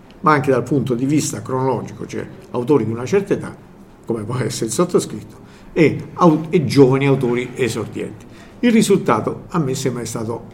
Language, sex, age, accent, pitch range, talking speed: Italian, male, 50-69, native, 115-150 Hz, 175 wpm